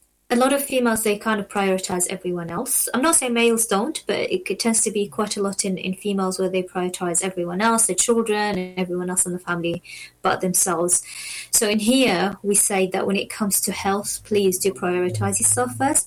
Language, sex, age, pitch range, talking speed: English, female, 20-39, 185-220 Hz, 215 wpm